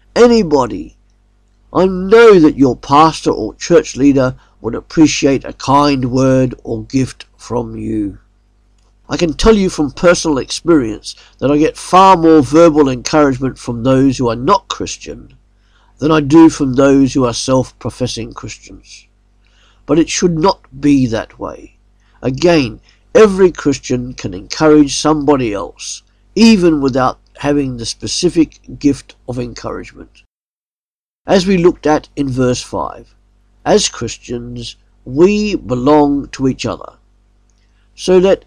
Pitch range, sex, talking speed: 110-160 Hz, male, 135 wpm